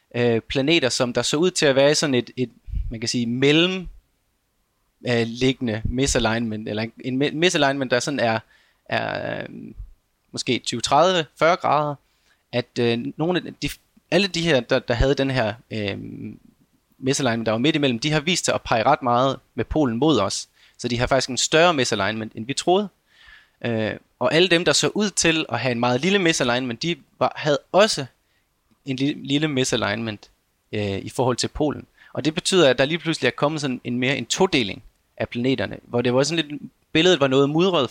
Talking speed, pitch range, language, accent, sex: 195 wpm, 115-145 Hz, Danish, native, male